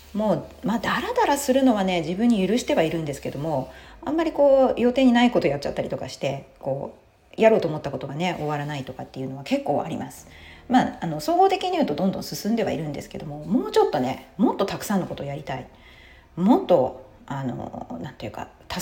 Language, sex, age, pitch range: Japanese, female, 40-59, 150-245 Hz